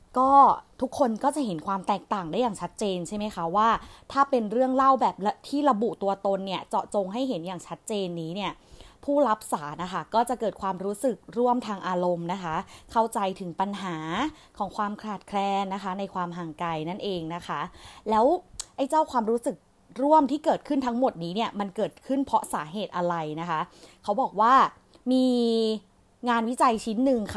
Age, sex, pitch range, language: 20-39, female, 185-245 Hz, Thai